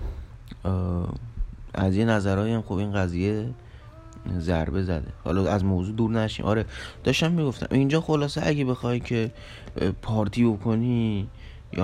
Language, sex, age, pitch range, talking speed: Persian, male, 30-49, 90-115 Hz, 120 wpm